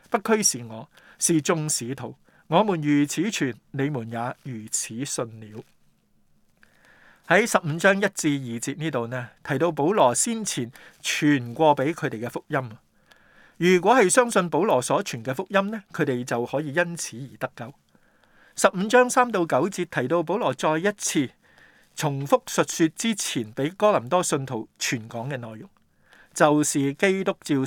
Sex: male